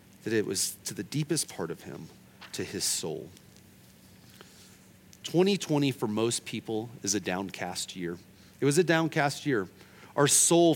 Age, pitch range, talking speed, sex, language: 40-59, 140-205 Hz, 150 wpm, male, English